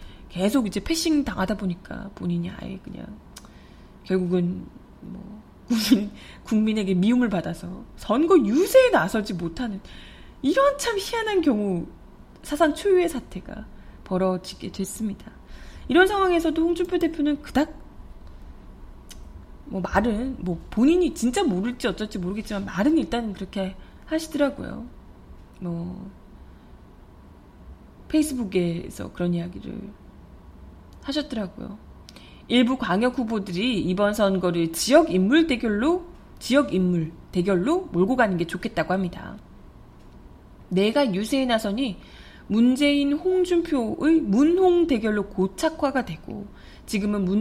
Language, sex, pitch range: Korean, female, 185-280 Hz